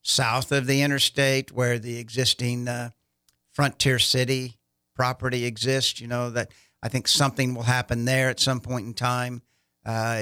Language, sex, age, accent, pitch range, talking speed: English, male, 50-69, American, 115-135 Hz, 160 wpm